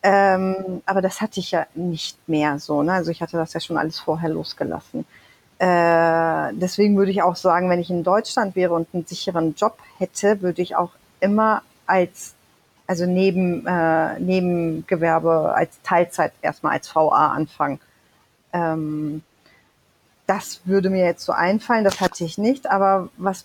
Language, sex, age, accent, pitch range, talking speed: German, female, 30-49, German, 175-210 Hz, 160 wpm